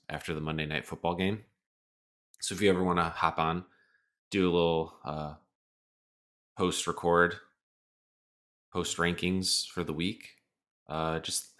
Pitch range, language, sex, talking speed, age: 75-95 Hz, English, male, 130 wpm, 20-39